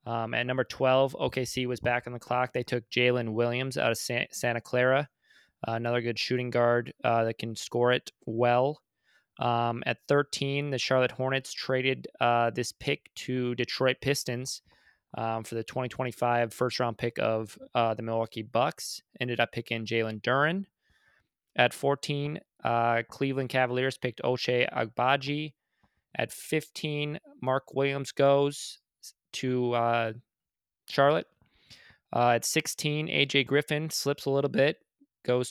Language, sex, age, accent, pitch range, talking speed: English, male, 20-39, American, 120-140 Hz, 145 wpm